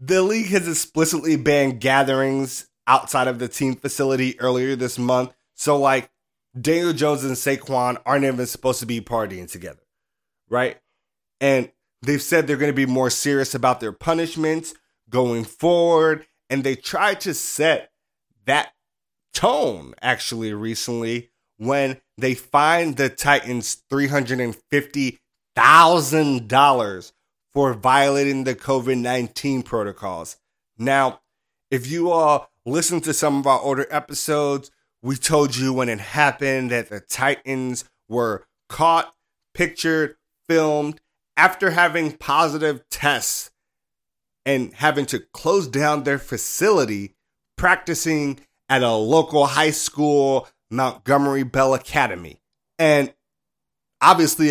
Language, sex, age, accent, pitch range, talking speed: English, male, 30-49, American, 125-150 Hz, 120 wpm